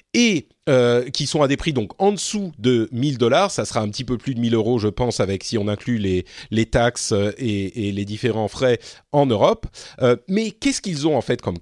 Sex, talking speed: male, 225 wpm